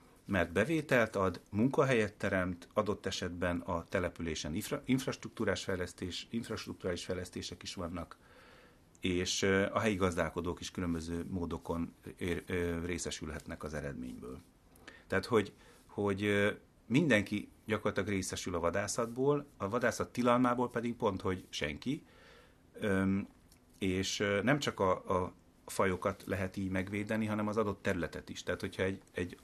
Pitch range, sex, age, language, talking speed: 85-110 Hz, male, 30-49, Hungarian, 125 wpm